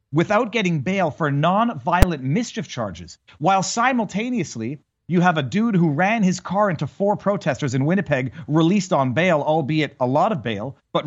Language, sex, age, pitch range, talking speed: English, male, 40-59, 150-200 Hz, 170 wpm